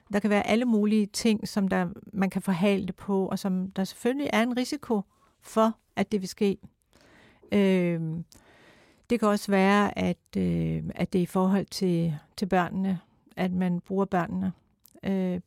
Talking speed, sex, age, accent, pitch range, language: 175 wpm, female, 60-79, native, 180-205 Hz, Danish